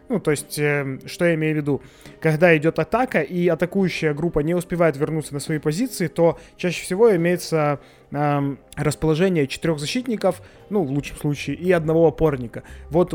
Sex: male